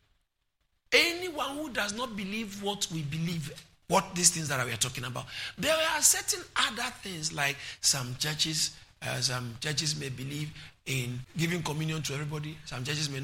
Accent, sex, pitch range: Nigerian, male, 130-165 Hz